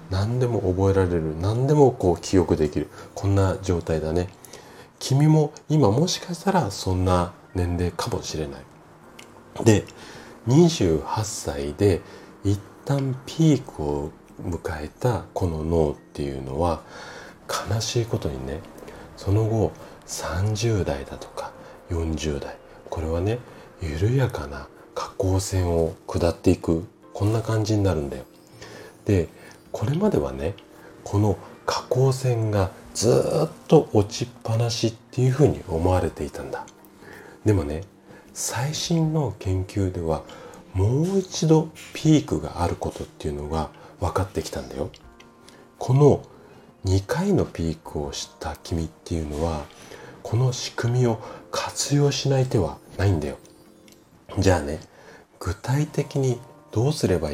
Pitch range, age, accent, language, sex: 80-125 Hz, 40-59, native, Japanese, male